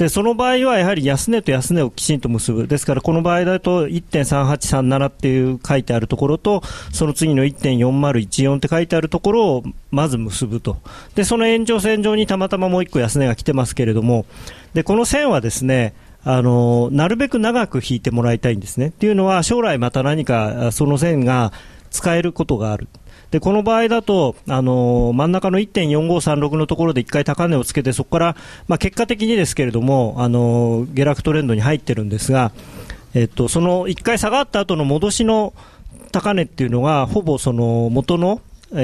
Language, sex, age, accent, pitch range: Japanese, male, 40-59, native, 125-185 Hz